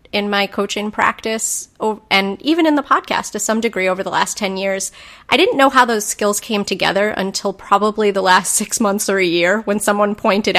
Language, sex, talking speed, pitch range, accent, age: English, female, 210 wpm, 195-225 Hz, American, 30-49